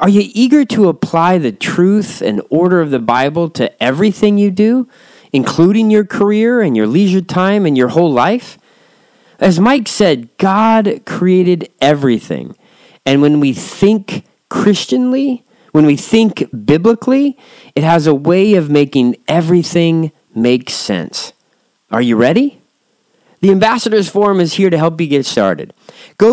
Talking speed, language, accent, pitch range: 150 wpm, English, American, 150-210 Hz